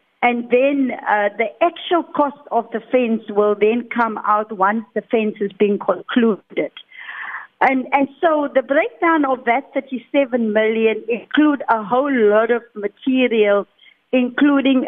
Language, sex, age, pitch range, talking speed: English, female, 50-69, 215-260 Hz, 140 wpm